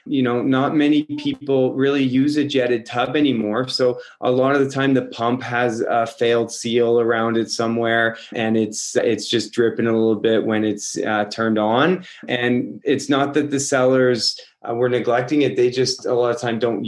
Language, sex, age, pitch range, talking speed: English, male, 20-39, 115-135 Hz, 200 wpm